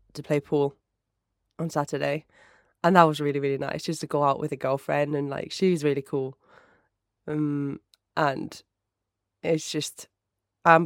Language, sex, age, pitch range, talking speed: English, female, 20-39, 145-165 Hz, 155 wpm